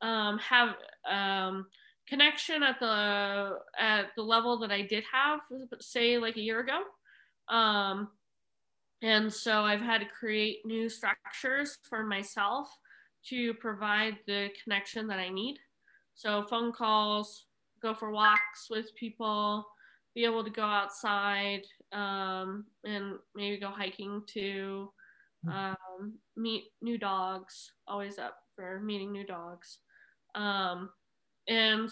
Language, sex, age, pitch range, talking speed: English, female, 20-39, 200-230 Hz, 125 wpm